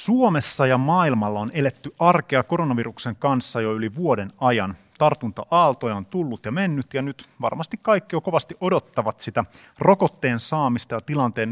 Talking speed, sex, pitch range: 150 wpm, male, 115-150 Hz